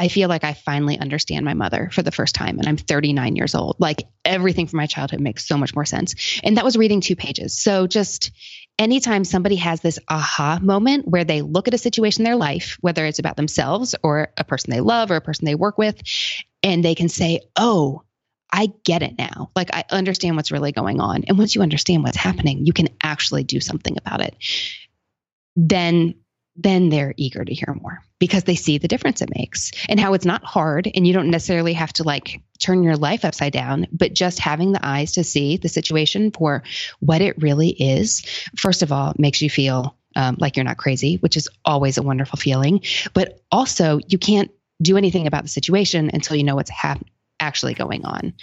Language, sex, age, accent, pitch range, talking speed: English, female, 20-39, American, 145-190 Hz, 215 wpm